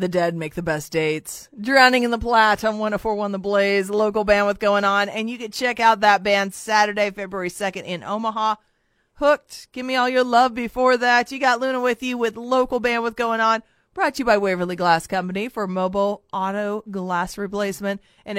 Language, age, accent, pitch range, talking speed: English, 40-59, American, 190-240 Hz, 195 wpm